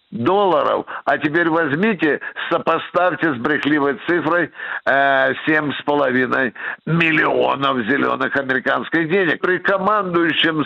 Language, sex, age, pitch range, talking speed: Russian, male, 60-79, 170-215 Hz, 90 wpm